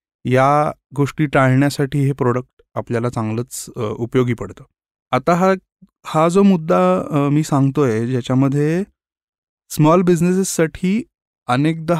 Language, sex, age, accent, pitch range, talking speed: Marathi, male, 20-39, native, 125-155 Hz, 100 wpm